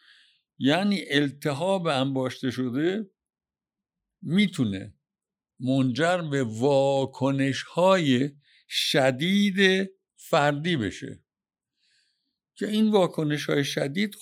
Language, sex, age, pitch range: Persian, male, 60-79, 125-175 Hz